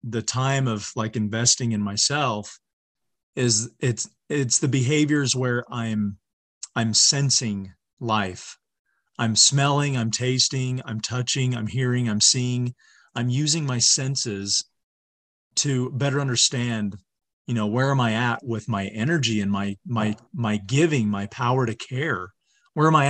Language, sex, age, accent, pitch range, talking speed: English, male, 40-59, American, 110-145 Hz, 145 wpm